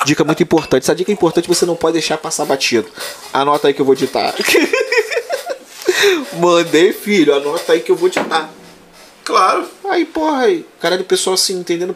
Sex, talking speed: male, 180 wpm